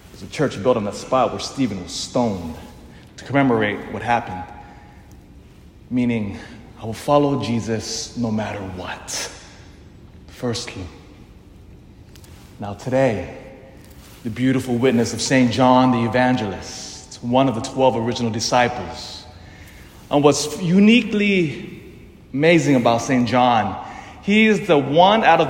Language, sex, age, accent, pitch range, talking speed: English, male, 30-49, American, 110-135 Hz, 120 wpm